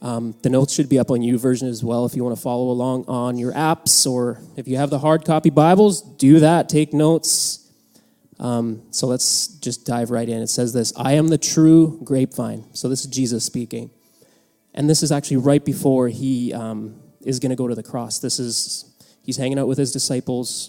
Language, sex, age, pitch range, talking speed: English, male, 20-39, 125-155 Hz, 220 wpm